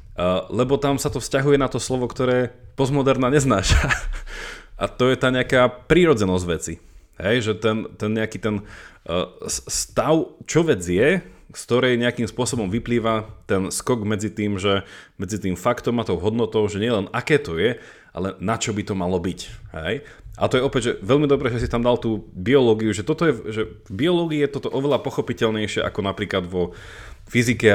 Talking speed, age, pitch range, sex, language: 185 wpm, 30-49, 100-125 Hz, male, Slovak